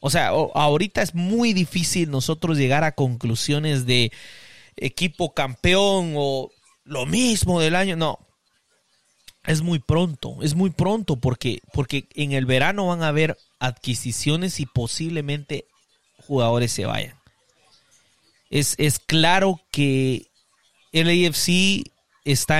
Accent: Mexican